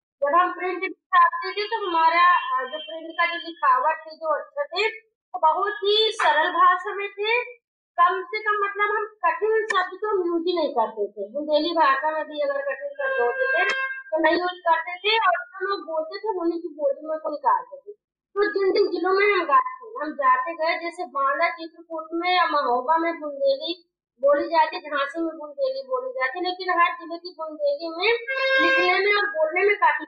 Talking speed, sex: 190 wpm, female